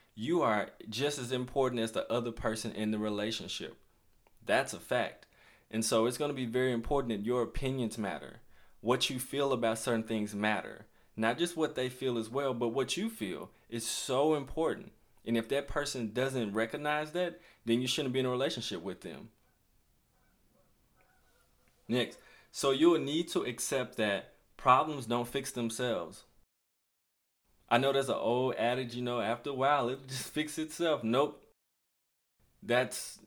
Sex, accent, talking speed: male, American, 170 wpm